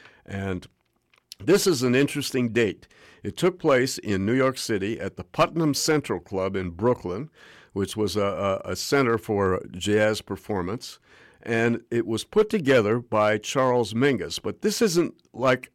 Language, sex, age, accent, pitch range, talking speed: English, male, 60-79, American, 100-135 Hz, 150 wpm